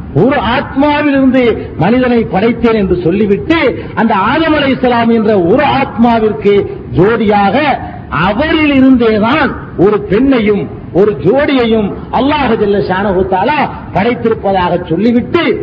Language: Tamil